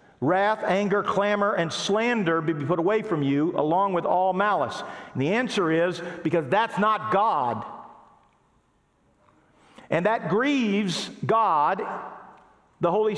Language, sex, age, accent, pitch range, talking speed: English, male, 50-69, American, 180-225 Hz, 130 wpm